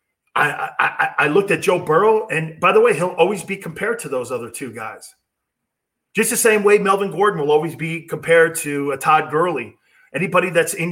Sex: male